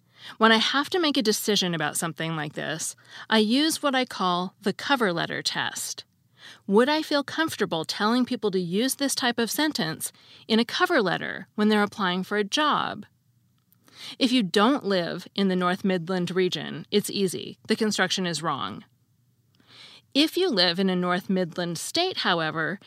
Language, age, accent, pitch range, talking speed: English, 40-59, American, 175-255 Hz, 175 wpm